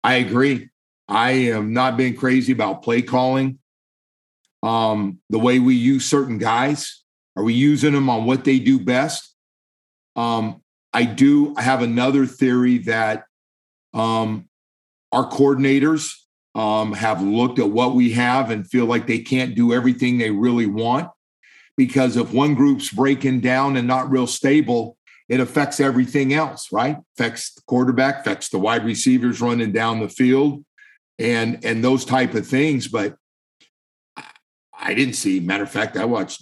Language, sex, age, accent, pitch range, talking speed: English, male, 50-69, American, 110-130 Hz, 155 wpm